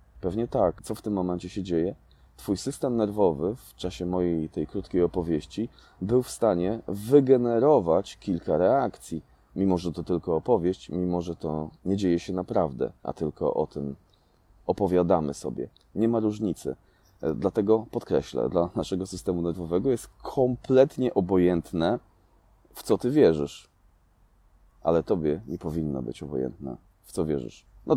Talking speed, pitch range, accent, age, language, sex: 145 wpm, 80-100 Hz, native, 20-39, Polish, male